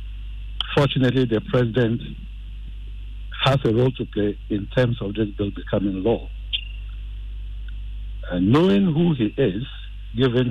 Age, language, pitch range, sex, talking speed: 60-79, English, 100-130 Hz, male, 120 wpm